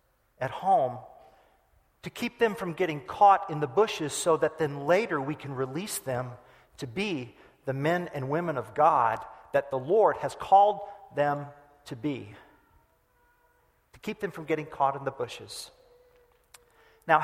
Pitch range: 150-195 Hz